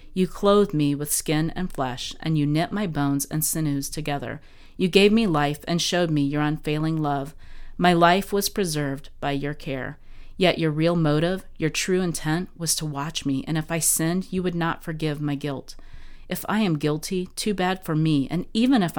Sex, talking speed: female, 200 wpm